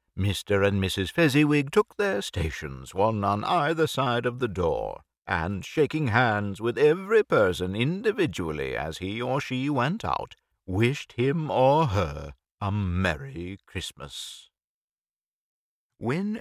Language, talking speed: English, 130 wpm